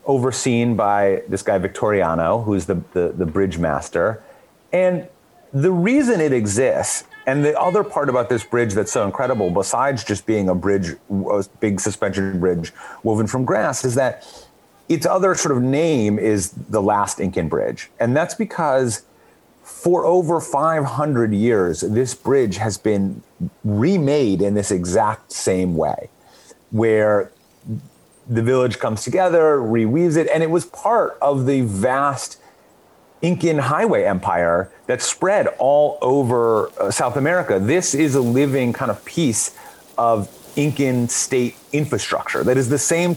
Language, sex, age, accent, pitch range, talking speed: English, male, 30-49, American, 105-150 Hz, 145 wpm